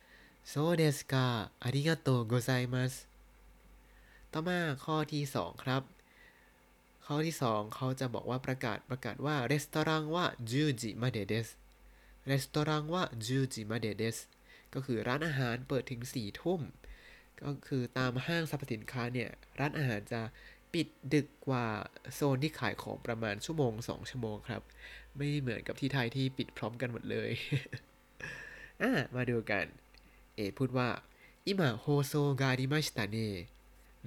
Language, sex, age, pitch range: Thai, male, 20-39, 115-150 Hz